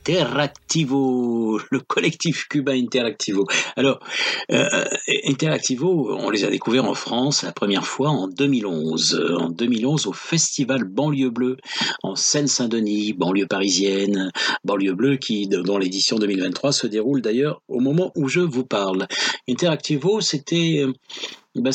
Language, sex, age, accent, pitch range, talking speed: French, male, 50-69, French, 105-145 Hz, 130 wpm